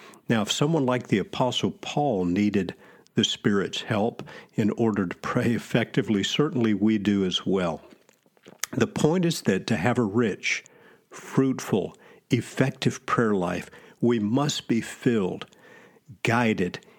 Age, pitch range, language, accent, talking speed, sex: 50-69, 100-125 Hz, English, American, 135 wpm, male